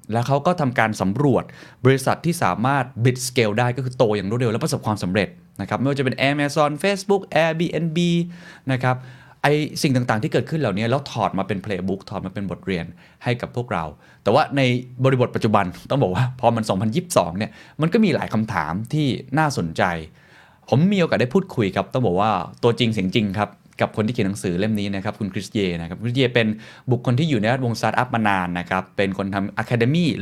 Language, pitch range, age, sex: Thai, 100-135 Hz, 20-39, male